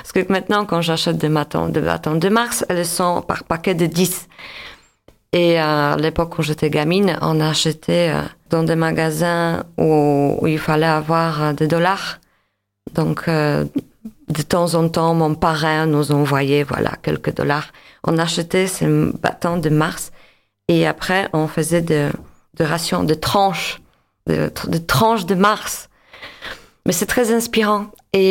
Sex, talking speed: female, 150 wpm